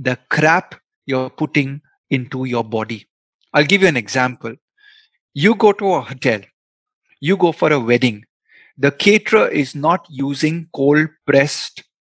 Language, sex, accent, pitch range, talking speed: Hindi, male, native, 130-165 Hz, 145 wpm